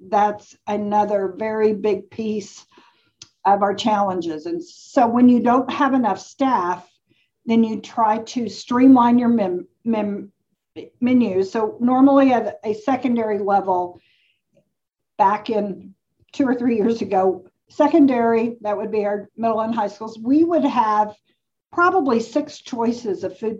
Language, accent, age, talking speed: English, American, 50-69, 135 wpm